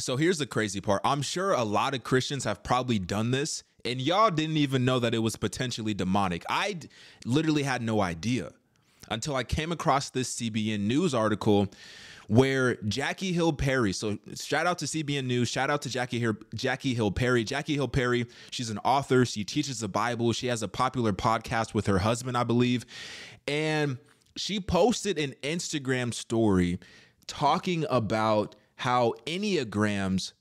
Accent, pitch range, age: American, 110-145 Hz, 20-39